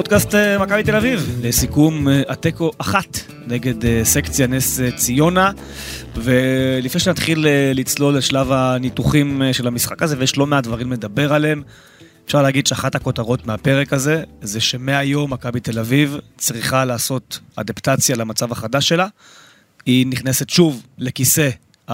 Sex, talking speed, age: male, 125 wpm, 20-39